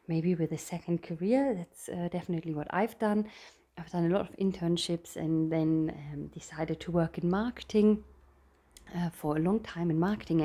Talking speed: 185 wpm